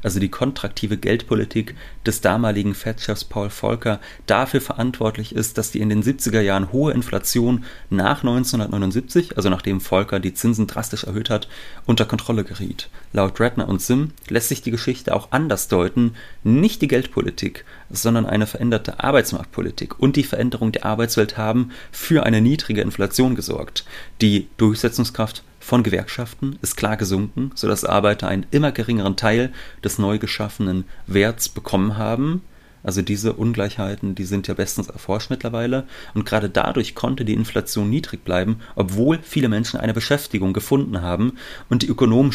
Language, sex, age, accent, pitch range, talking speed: German, male, 30-49, German, 105-125 Hz, 155 wpm